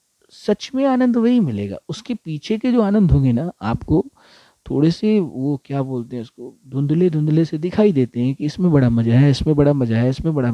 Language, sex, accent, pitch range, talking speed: Hindi, male, native, 130-185 Hz, 210 wpm